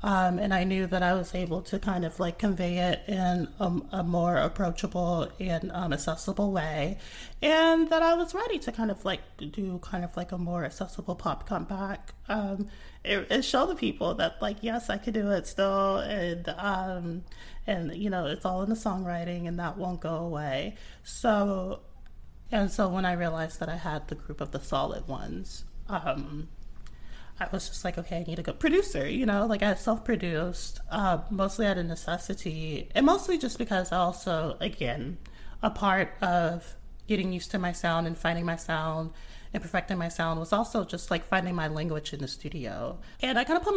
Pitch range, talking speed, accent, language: 170-215 Hz, 195 wpm, American, English